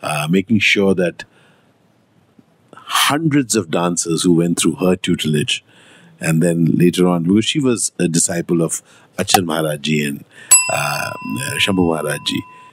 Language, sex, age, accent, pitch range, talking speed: Hindi, male, 50-69, native, 85-110 Hz, 135 wpm